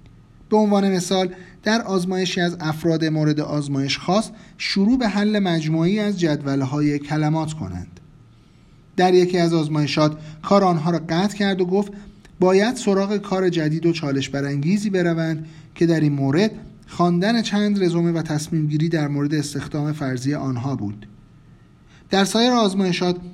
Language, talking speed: Persian, 140 wpm